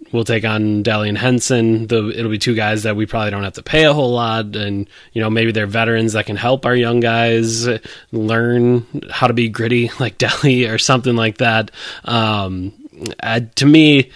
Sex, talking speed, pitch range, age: male, 205 wpm, 110-120 Hz, 20-39